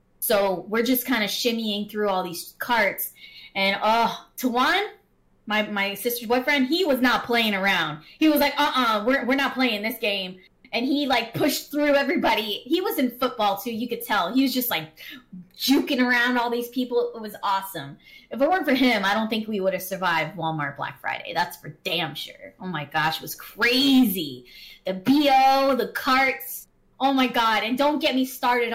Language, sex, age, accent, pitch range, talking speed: English, female, 20-39, American, 205-265 Hz, 200 wpm